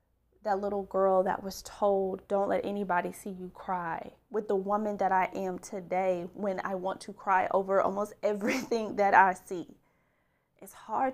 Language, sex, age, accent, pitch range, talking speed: English, female, 20-39, American, 190-235 Hz, 170 wpm